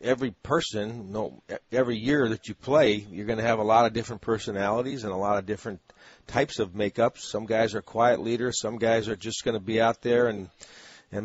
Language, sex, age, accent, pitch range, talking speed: English, male, 40-59, American, 105-120 Hz, 225 wpm